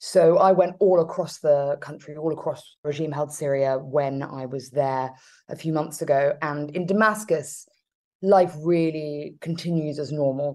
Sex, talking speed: female, 160 wpm